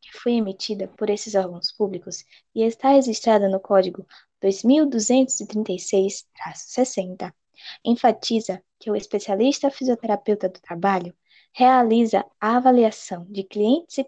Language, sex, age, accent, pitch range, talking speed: Portuguese, female, 10-29, Brazilian, 195-255 Hz, 105 wpm